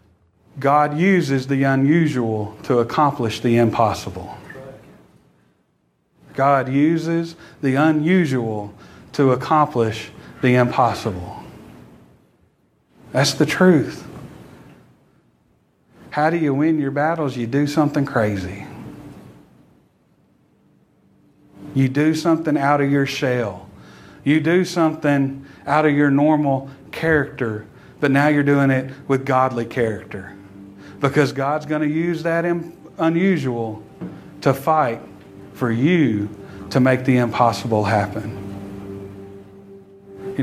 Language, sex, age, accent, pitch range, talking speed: English, male, 40-59, American, 105-150 Hz, 100 wpm